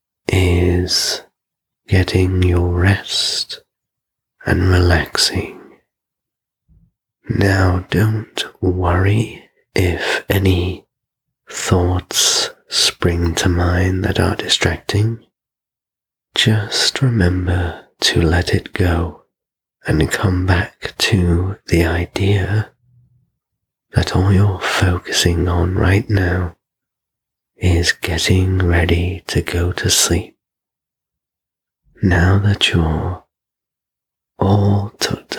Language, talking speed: English, 85 wpm